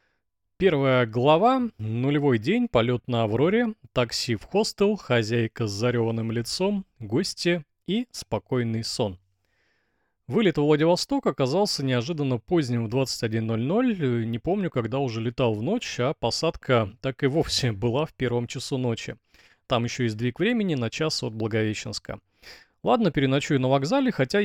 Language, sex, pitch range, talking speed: Russian, male, 120-175 Hz, 140 wpm